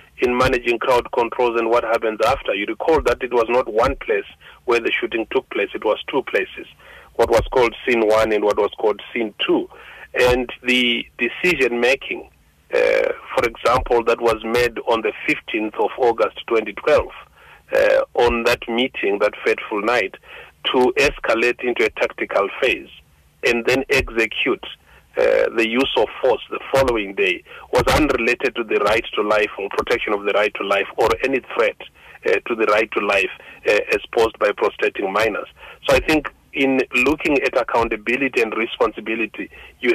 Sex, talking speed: male, 170 wpm